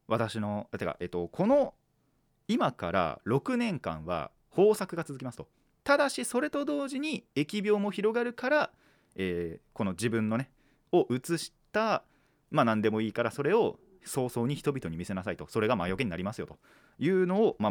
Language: Japanese